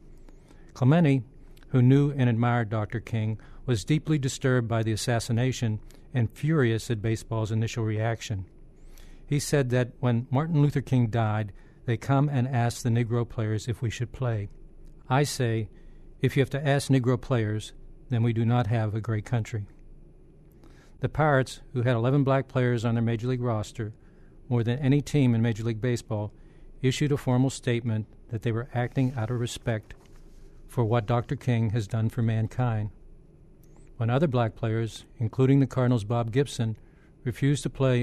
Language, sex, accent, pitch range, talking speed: English, male, American, 115-130 Hz, 165 wpm